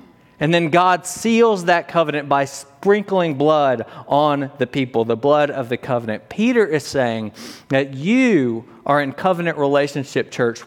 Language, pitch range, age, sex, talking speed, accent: English, 125-170 Hz, 40-59, male, 150 wpm, American